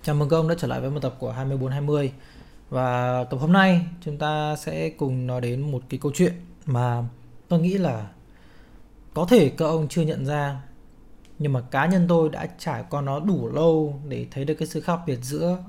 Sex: male